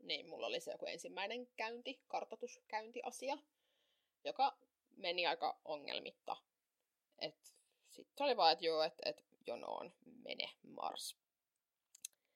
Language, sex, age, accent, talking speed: Finnish, female, 20-39, native, 110 wpm